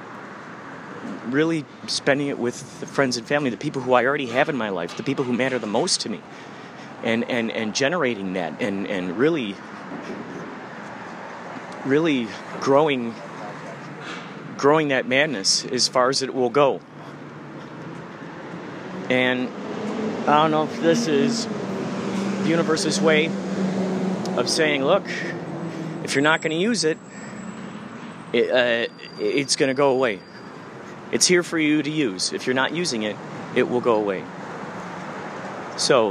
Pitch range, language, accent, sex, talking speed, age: 130-180 Hz, English, American, male, 145 wpm, 30-49